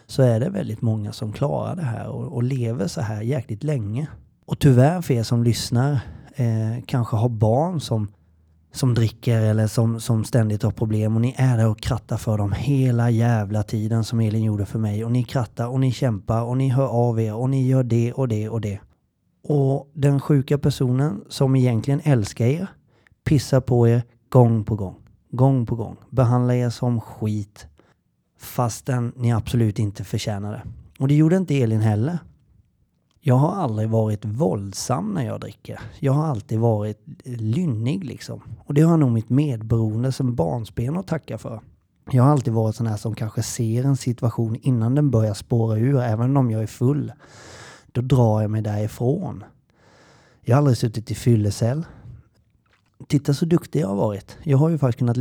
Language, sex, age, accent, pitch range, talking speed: Swedish, male, 30-49, native, 110-135 Hz, 185 wpm